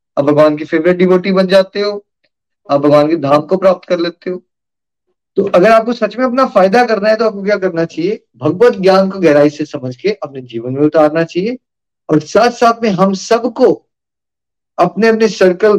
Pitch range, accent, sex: 155-205 Hz, native, male